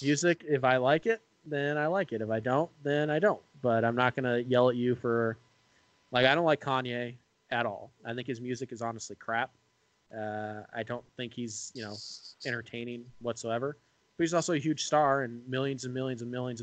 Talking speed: 215 wpm